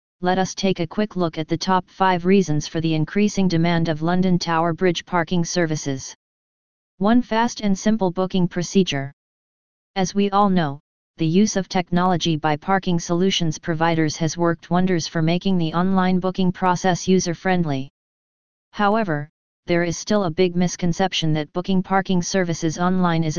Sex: female